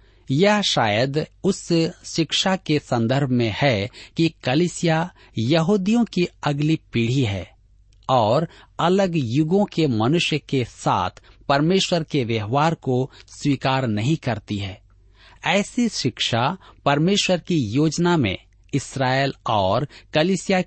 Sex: male